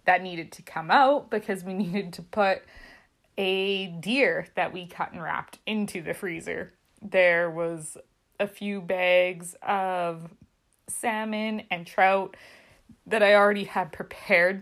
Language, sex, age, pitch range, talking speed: English, female, 20-39, 170-195 Hz, 140 wpm